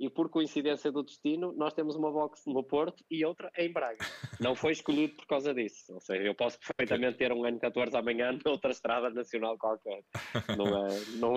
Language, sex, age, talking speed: Portuguese, male, 20-39, 205 wpm